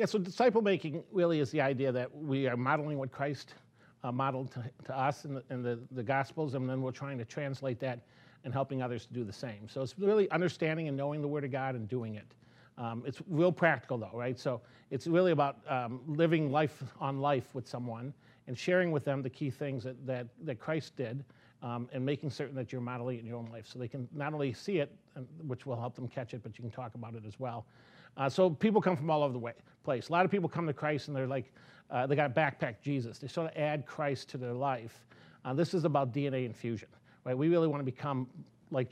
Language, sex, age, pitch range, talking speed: English, male, 40-59, 125-155 Hz, 245 wpm